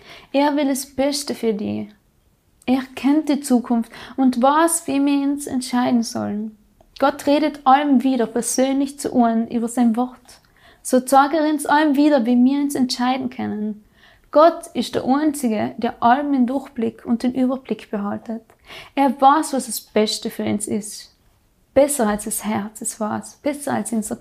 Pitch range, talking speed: 230-280 Hz, 165 wpm